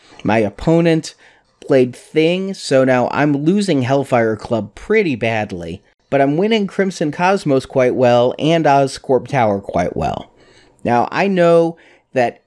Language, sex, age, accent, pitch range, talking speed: English, male, 30-49, American, 125-155 Hz, 135 wpm